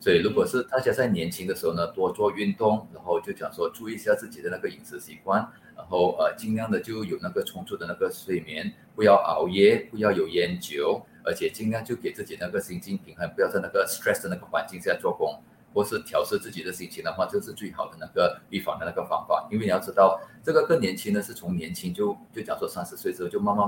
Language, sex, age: Chinese, male, 30-49